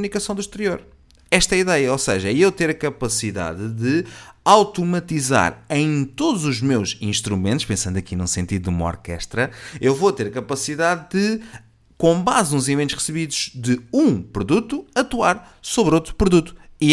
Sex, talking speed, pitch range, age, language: male, 165 wpm, 110-175 Hz, 30-49, Portuguese